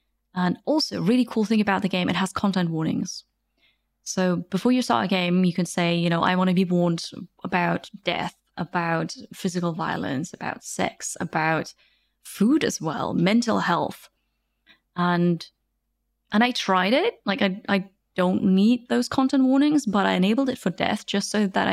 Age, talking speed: 20-39, 175 wpm